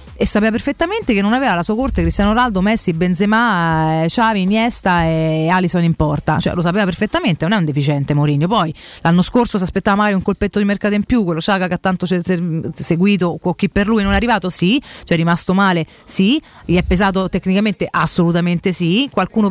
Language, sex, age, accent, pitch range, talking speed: Italian, female, 30-49, native, 170-220 Hz, 210 wpm